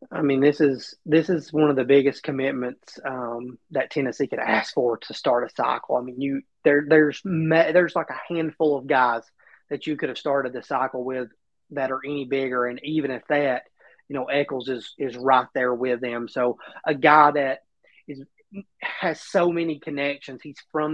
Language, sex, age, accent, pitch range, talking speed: English, male, 30-49, American, 130-155 Hz, 200 wpm